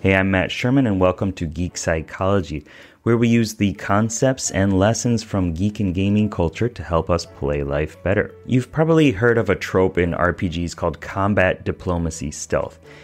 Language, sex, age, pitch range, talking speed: English, male, 30-49, 90-115 Hz, 180 wpm